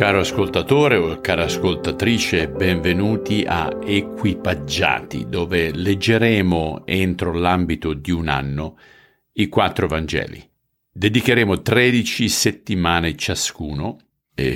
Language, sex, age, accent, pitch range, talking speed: Italian, male, 50-69, native, 75-95 Hz, 95 wpm